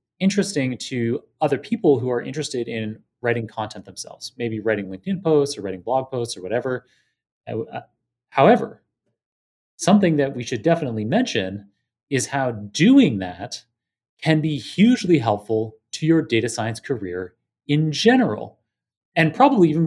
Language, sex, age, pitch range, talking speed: English, male, 30-49, 115-165 Hz, 140 wpm